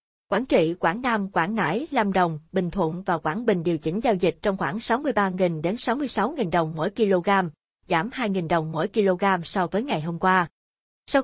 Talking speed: 190 wpm